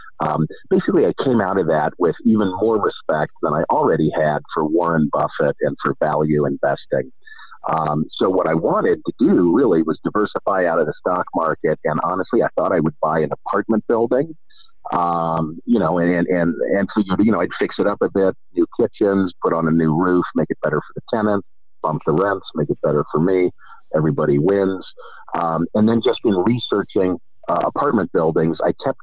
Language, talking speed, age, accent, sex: English, 200 wpm, 50-69, American, male